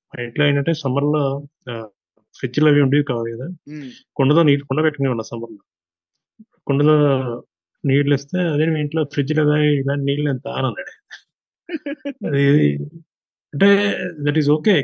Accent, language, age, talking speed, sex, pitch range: native, Telugu, 30-49, 115 wpm, male, 125-155 Hz